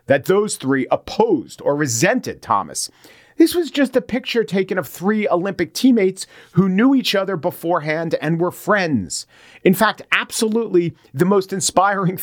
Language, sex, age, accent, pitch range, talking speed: English, male, 40-59, American, 145-190 Hz, 150 wpm